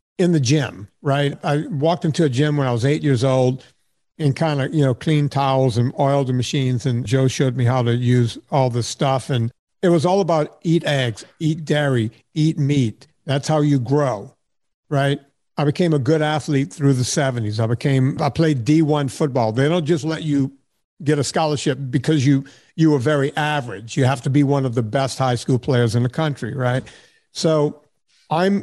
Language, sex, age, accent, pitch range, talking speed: English, male, 50-69, American, 135-160 Hz, 205 wpm